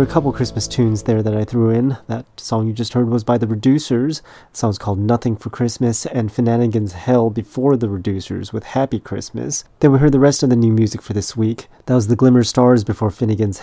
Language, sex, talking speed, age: English, male, 240 wpm, 30-49